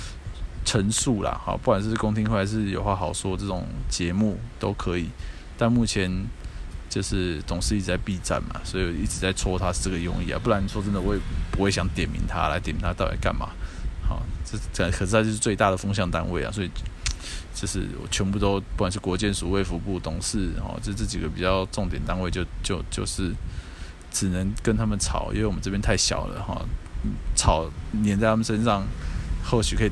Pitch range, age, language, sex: 85-105 Hz, 20-39, Chinese, male